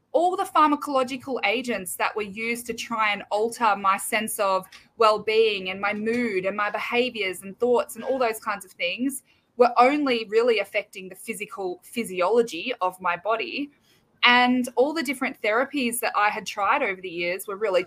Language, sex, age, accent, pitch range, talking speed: English, female, 20-39, Australian, 205-255 Hz, 180 wpm